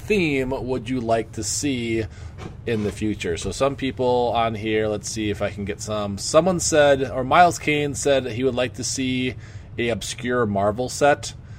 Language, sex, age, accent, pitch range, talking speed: English, male, 20-39, American, 105-125 Hz, 185 wpm